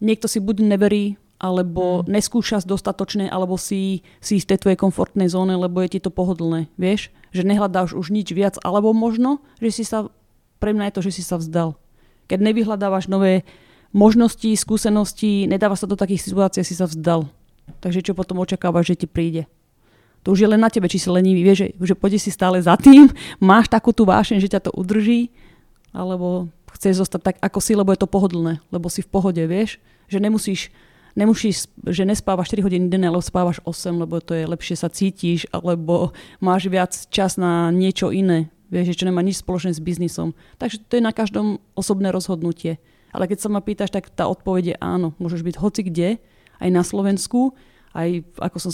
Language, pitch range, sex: Slovak, 175-200 Hz, female